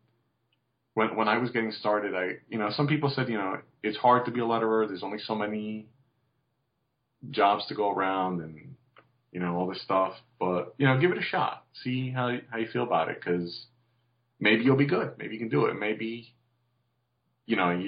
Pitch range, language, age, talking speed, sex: 95-125 Hz, English, 30-49, 205 wpm, male